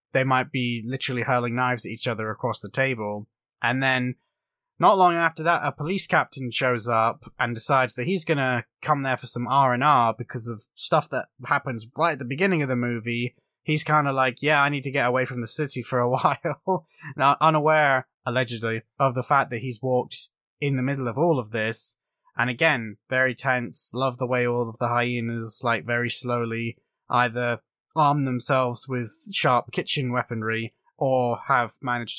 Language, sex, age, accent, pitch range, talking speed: English, male, 20-39, British, 115-140 Hz, 190 wpm